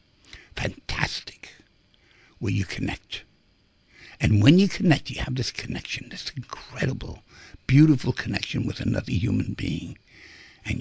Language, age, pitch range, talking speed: English, 60-79, 105-150 Hz, 115 wpm